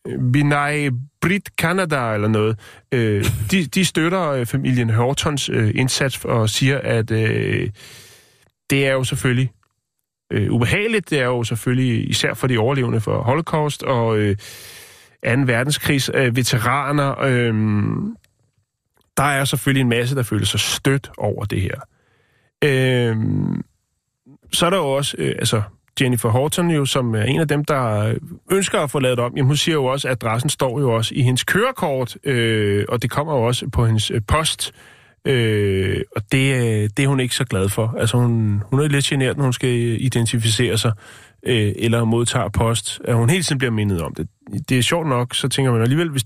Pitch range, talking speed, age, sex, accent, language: 115-140 Hz, 185 wpm, 30-49, male, native, Danish